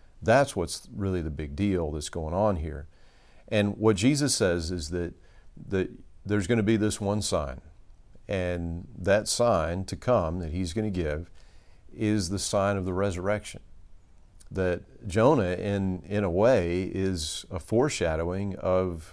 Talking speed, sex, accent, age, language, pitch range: 155 wpm, male, American, 50-69, English, 85-100 Hz